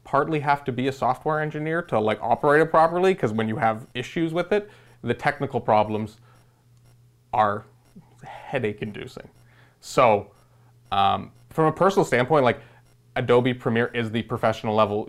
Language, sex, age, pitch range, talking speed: English, male, 30-49, 110-130 Hz, 150 wpm